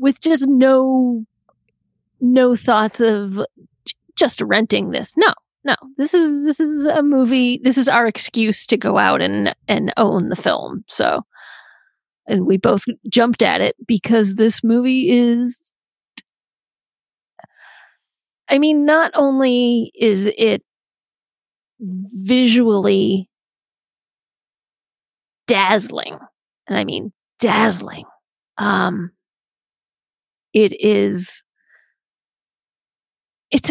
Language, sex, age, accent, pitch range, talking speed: English, female, 30-49, American, 220-275 Hz, 100 wpm